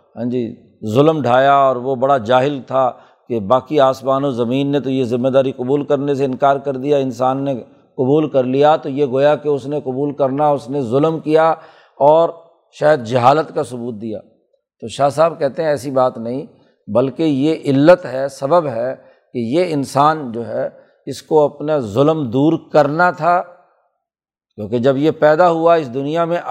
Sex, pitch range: male, 130-150 Hz